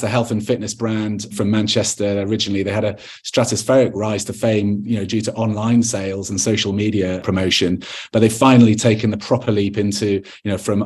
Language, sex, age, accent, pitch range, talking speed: English, male, 30-49, British, 100-120 Hz, 195 wpm